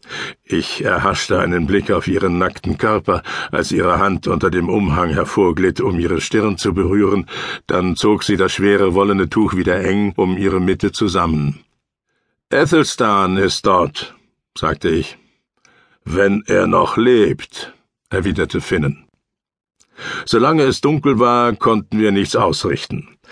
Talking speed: 135 wpm